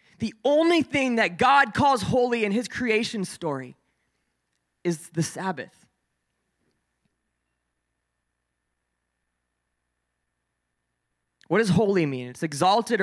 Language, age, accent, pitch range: English, 20-39, American, 145-220 Hz